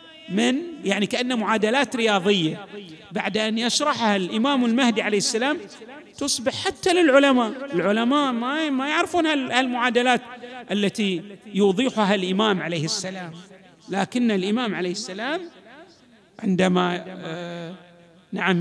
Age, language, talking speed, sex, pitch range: 50-69, Arabic, 95 wpm, male, 190-250 Hz